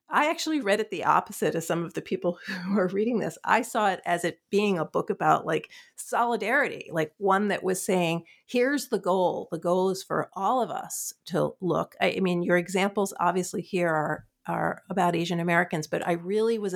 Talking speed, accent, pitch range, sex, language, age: 210 wpm, American, 170-205 Hz, female, English, 50-69